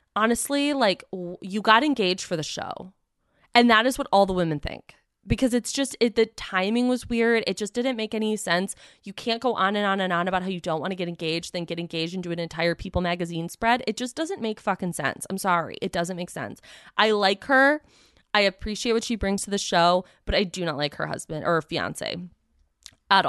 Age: 20-39